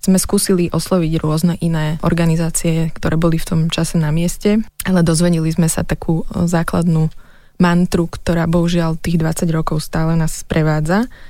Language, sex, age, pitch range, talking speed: Slovak, female, 20-39, 155-170 Hz, 150 wpm